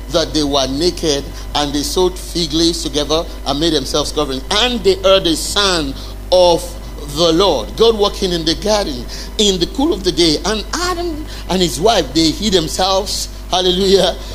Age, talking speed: 50-69, 175 wpm